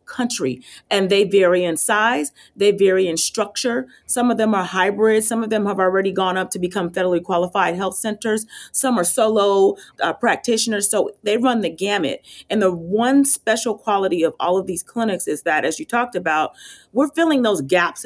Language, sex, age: English, female, 40-59